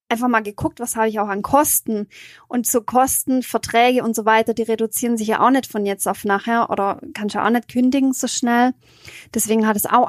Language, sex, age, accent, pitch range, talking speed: German, female, 20-39, German, 205-240 Hz, 225 wpm